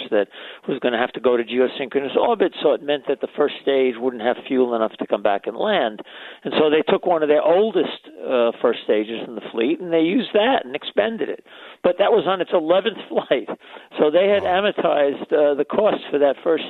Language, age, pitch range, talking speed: English, 50-69, 115-145 Hz, 230 wpm